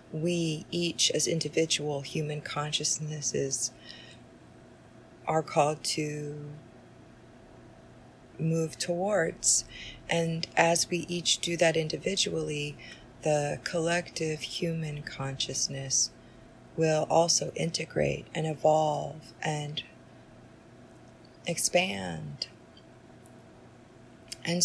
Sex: female